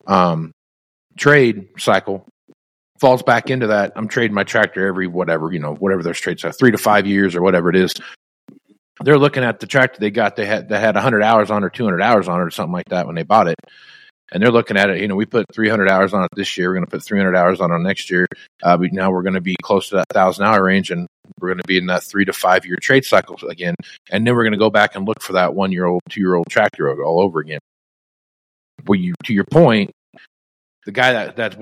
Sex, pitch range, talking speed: male, 90-110 Hz, 250 wpm